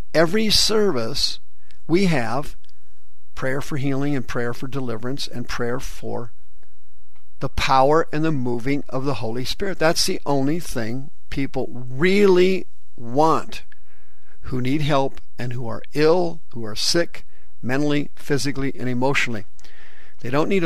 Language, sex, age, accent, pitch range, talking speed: English, male, 50-69, American, 120-150 Hz, 135 wpm